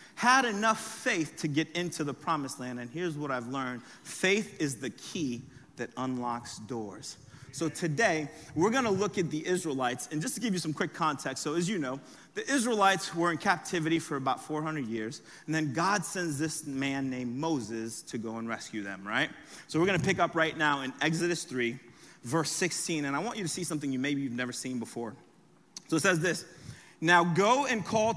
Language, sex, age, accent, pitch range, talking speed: English, male, 30-49, American, 135-180 Hz, 205 wpm